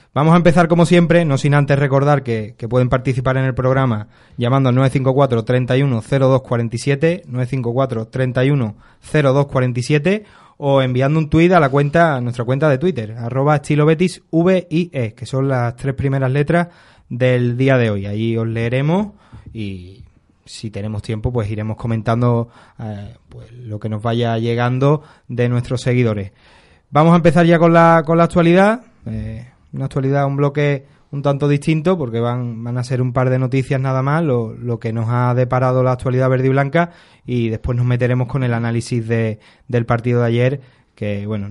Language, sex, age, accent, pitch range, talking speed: Spanish, male, 20-39, Spanish, 115-145 Hz, 175 wpm